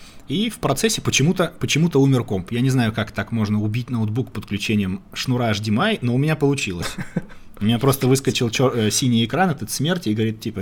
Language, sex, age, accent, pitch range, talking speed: Russian, male, 20-39, native, 95-120 Hz, 185 wpm